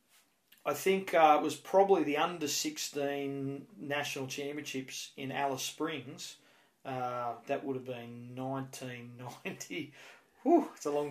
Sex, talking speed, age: male, 135 wpm, 30-49